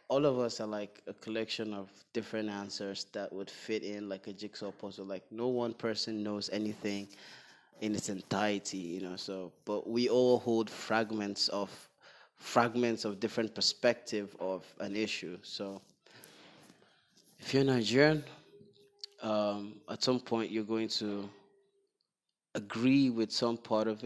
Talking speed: 145 wpm